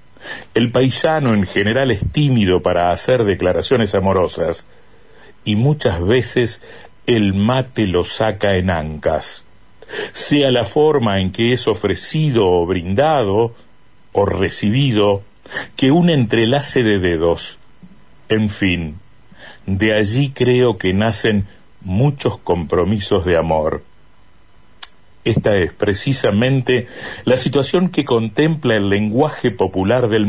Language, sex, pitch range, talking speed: Spanish, male, 100-135 Hz, 115 wpm